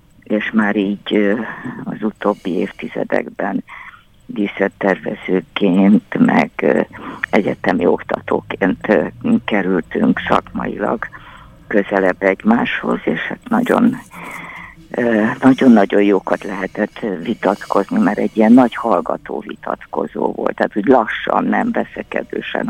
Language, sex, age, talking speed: Hungarian, female, 50-69, 85 wpm